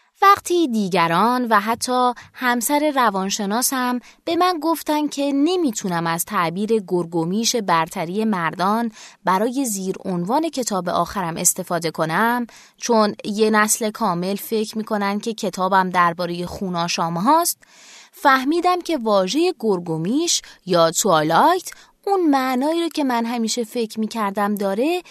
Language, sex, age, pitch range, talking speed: Persian, female, 20-39, 185-270 Hz, 120 wpm